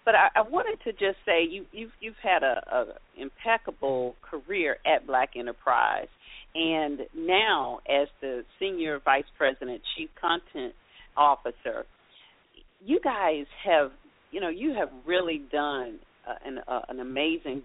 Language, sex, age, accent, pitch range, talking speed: English, female, 40-59, American, 130-190 Hz, 145 wpm